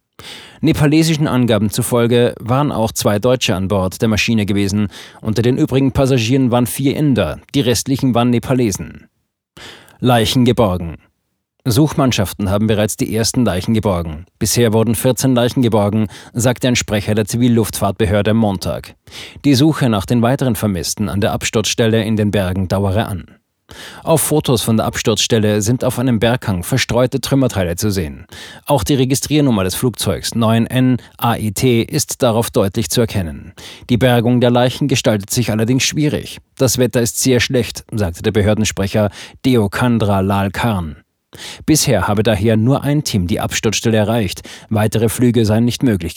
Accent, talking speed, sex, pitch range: German, 150 wpm, male, 105-130 Hz